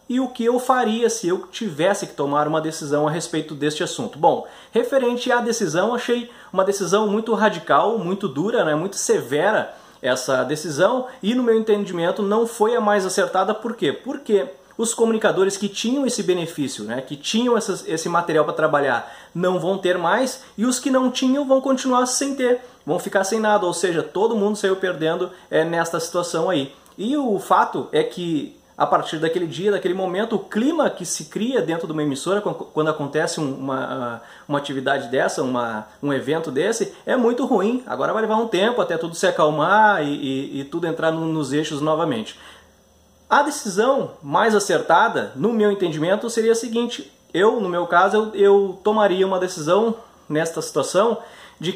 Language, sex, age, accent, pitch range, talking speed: Portuguese, male, 20-39, Brazilian, 165-230 Hz, 175 wpm